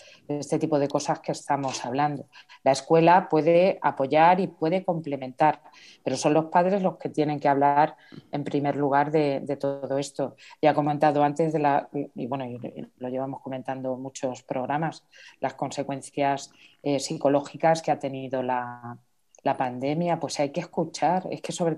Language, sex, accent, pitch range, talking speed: Spanish, female, Spanish, 145-165 Hz, 170 wpm